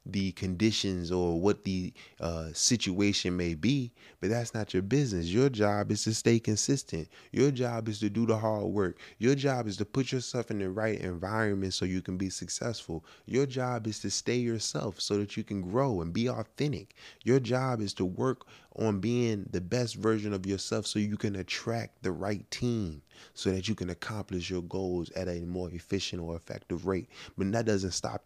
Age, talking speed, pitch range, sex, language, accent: 20-39, 200 wpm, 95-115 Hz, male, English, American